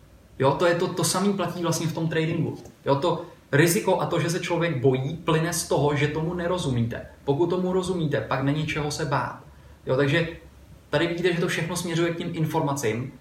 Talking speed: 205 wpm